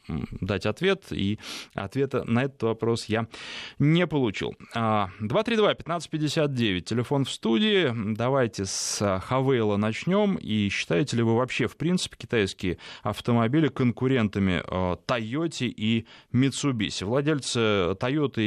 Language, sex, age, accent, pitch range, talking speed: Russian, male, 20-39, native, 110-140 Hz, 105 wpm